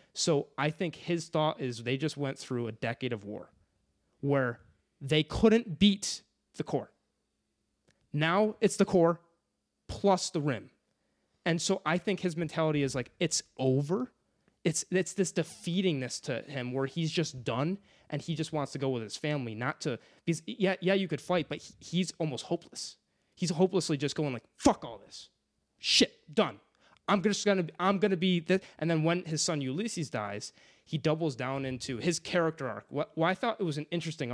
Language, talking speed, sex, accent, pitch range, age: English, 185 wpm, male, American, 135-175 Hz, 20-39